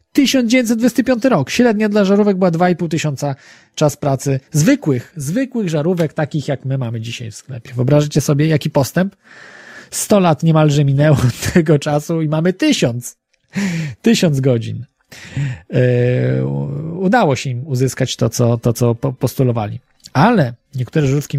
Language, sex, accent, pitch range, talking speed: Polish, male, native, 135-190 Hz, 130 wpm